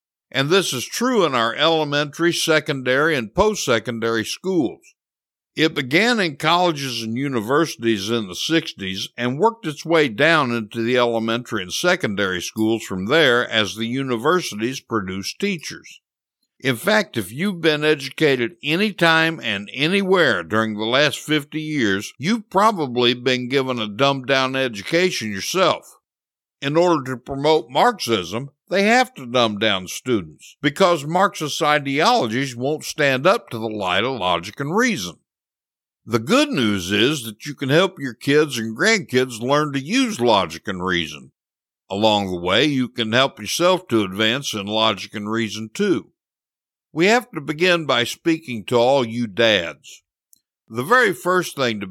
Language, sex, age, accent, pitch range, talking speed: English, male, 60-79, American, 110-160 Hz, 150 wpm